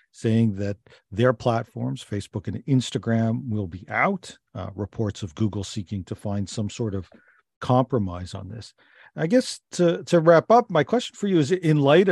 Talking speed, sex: 180 wpm, male